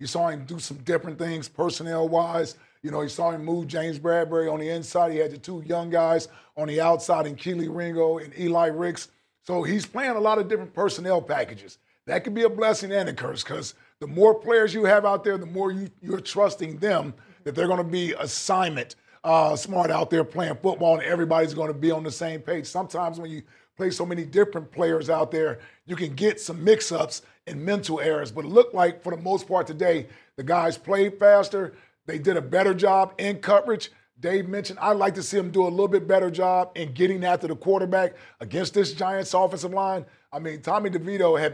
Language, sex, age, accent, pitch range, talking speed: English, male, 40-59, American, 160-195 Hz, 220 wpm